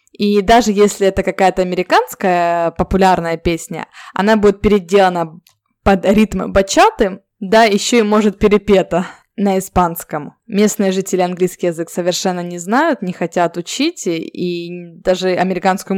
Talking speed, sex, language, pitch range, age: 130 wpm, female, Russian, 180-220 Hz, 20-39